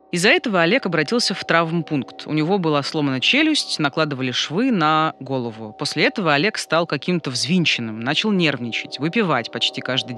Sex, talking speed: female, 155 wpm